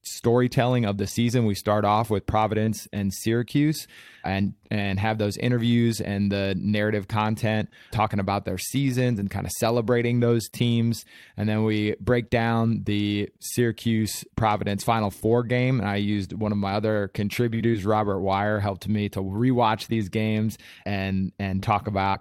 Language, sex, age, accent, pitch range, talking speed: English, male, 20-39, American, 100-115 Hz, 165 wpm